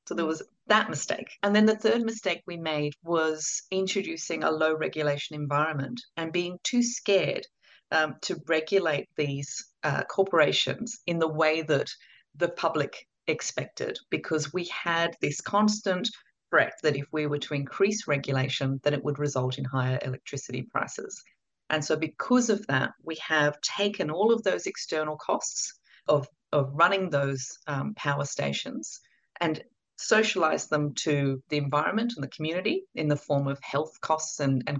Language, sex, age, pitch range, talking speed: English, female, 40-59, 145-195 Hz, 160 wpm